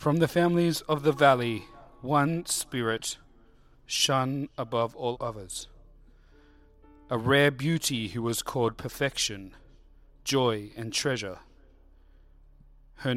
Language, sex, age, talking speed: English, male, 40-59, 105 wpm